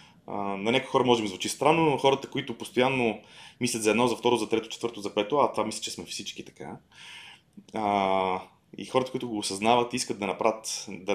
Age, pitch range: 30-49, 95-115 Hz